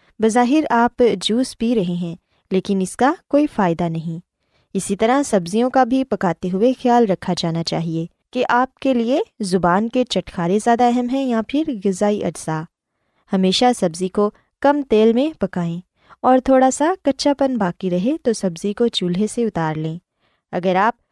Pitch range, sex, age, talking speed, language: 185-255 Hz, female, 20-39, 170 wpm, Urdu